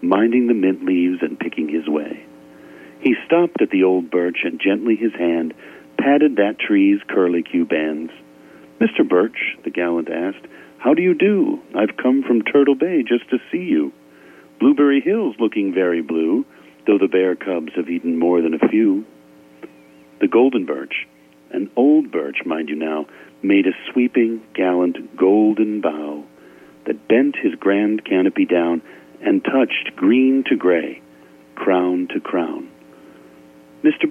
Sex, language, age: male, English, 50-69